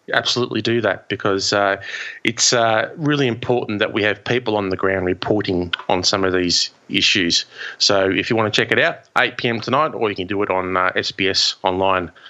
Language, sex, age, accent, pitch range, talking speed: English, male, 20-39, Australian, 95-115 Hz, 205 wpm